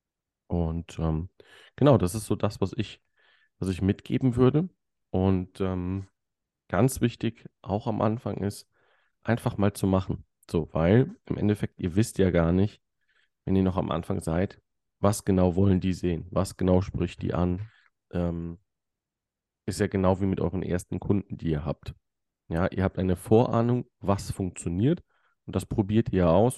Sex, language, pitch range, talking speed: male, German, 85-105 Hz, 165 wpm